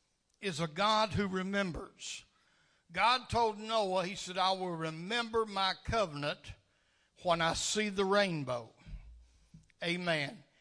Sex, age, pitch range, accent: male, 60-79, 155-195 Hz, American